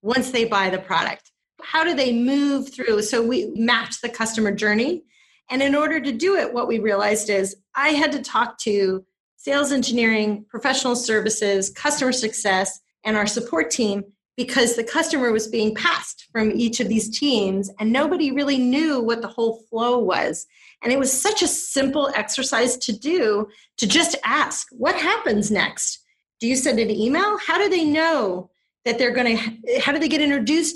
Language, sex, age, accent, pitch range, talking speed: English, female, 30-49, American, 215-295 Hz, 185 wpm